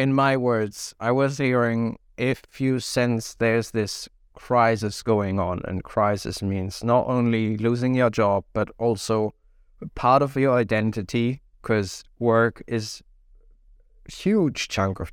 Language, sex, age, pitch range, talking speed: English, male, 20-39, 100-125 Hz, 140 wpm